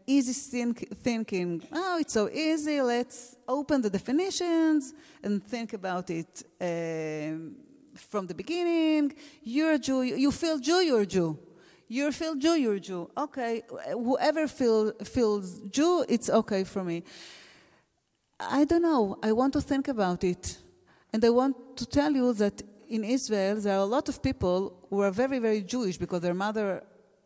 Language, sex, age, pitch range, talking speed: English, female, 30-49, 190-265 Hz, 160 wpm